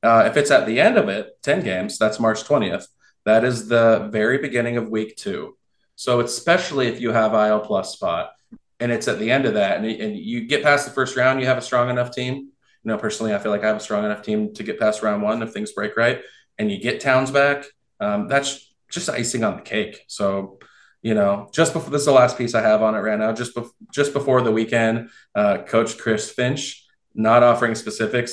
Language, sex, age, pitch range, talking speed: English, male, 20-39, 110-145 Hz, 235 wpm